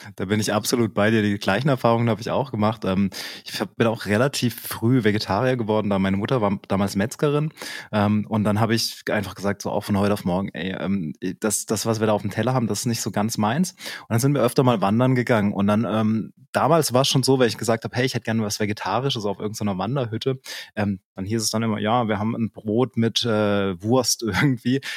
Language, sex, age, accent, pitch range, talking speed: German, male, 20-39, German, 105-130 Hz, 230 wpm